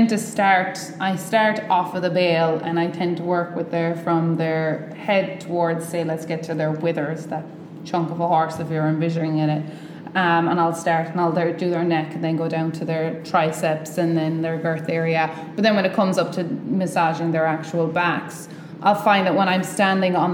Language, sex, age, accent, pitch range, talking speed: English, female, 20-39, Irish, 165-195 Hz, 220 wpm